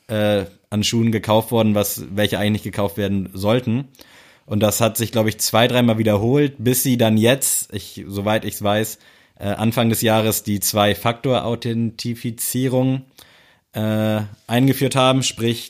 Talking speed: 135 wpm